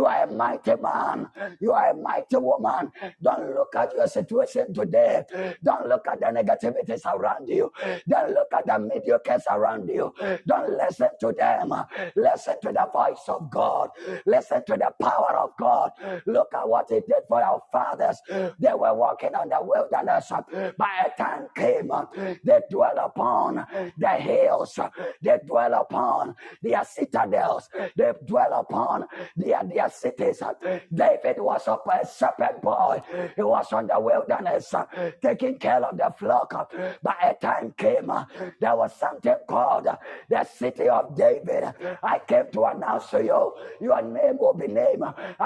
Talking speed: 155 wpm